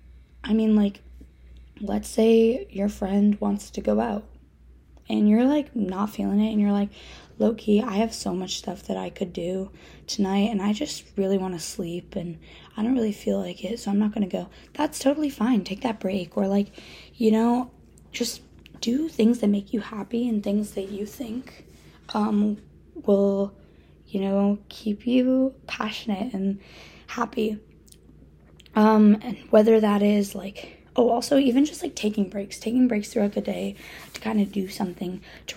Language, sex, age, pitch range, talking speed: English, female, 10-29, 195-225 Hz, 180 wpm